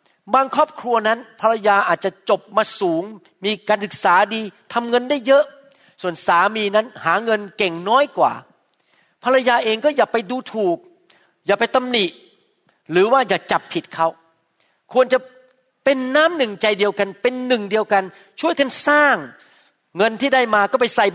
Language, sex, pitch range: Thai, male, 185-250 Hz